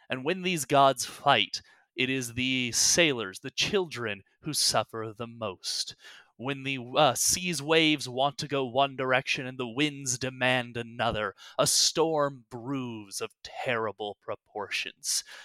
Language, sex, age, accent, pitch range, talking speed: English, male, 30-49, American, 125-150 Hz, 140 wpm